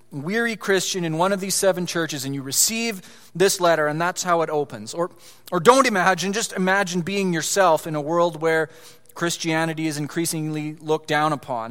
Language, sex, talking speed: English, male, 185 wpm